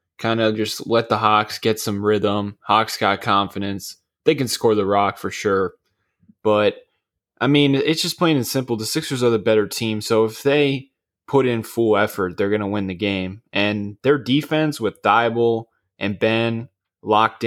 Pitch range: 105-125 Hz